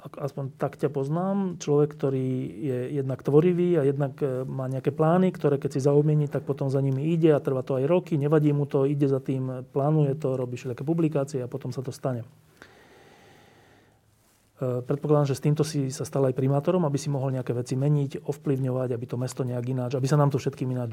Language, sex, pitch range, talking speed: Slovak, male, 130-155 Hz, 205 wpm